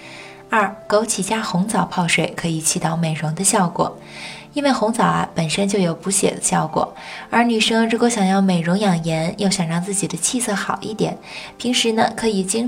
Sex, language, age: female, Chinese, 20-39